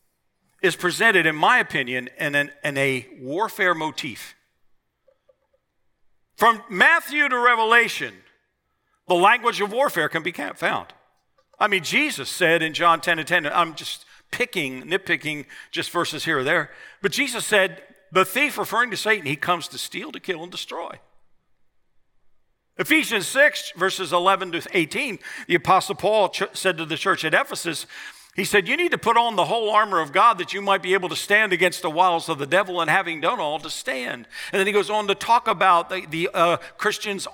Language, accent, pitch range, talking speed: English, American, 170-215 Hz, 180 wpm